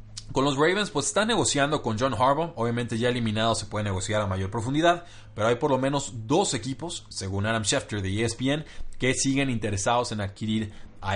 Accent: Mexican